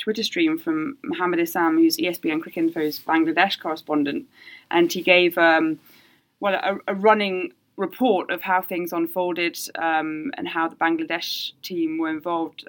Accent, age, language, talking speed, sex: British, 20-39, English, 150 wpm, female